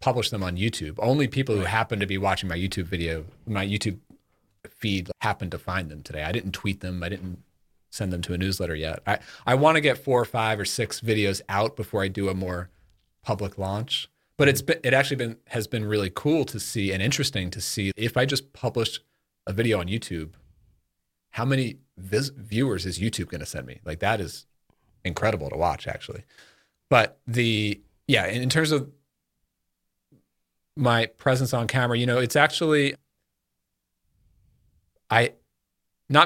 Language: English